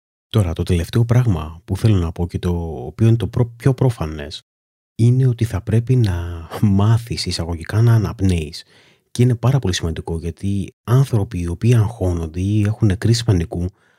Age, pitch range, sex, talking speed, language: 30-49, 85-115 Hz, male, 165 wpm, Greek